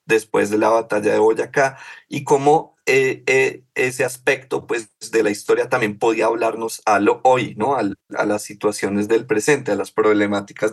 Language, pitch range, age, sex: Spanish, 105-135 Hz, 30-49, male